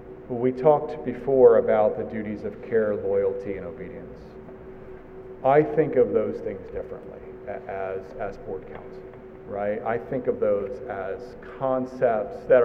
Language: English